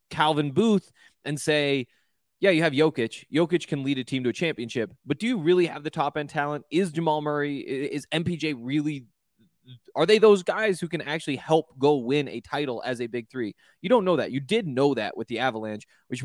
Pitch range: 125-160 Hz